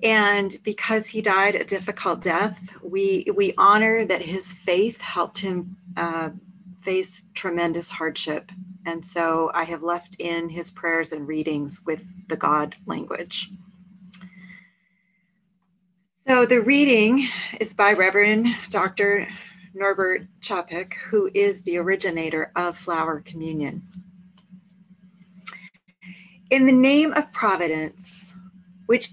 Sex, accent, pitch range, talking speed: female, American, 180-210 Hz, 115 wpm